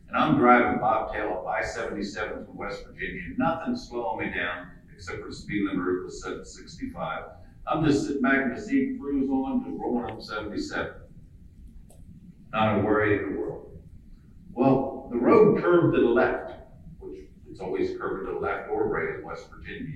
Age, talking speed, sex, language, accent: 50-69, 175 wpm, male, English, American